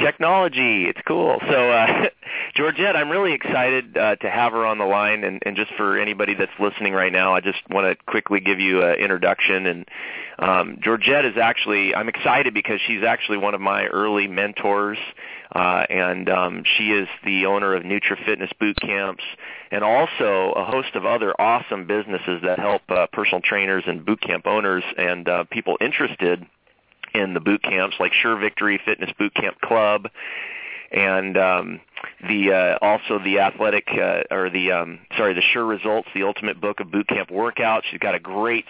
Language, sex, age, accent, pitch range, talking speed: English, male, 30-49, American, 95-105 Hz, 180 wpm